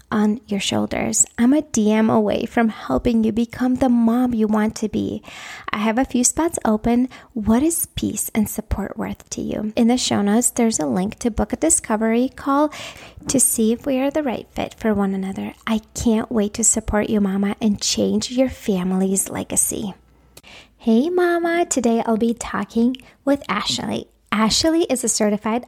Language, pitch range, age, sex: English, 210-255 Hz, 30-49, female